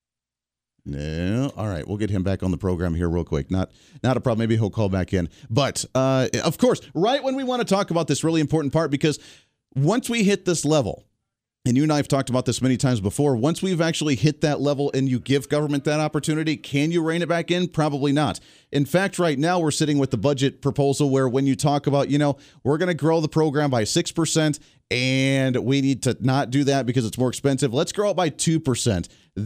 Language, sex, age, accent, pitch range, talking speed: English, male, 40-59, American, 120-155 Hz, 235 wpm